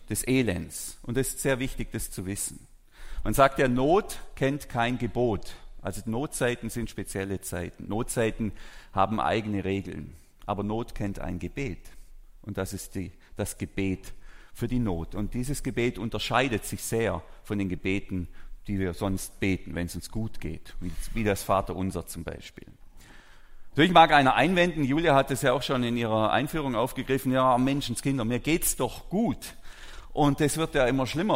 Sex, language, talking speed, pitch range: male, German, 175 wpm, 100-140 Hz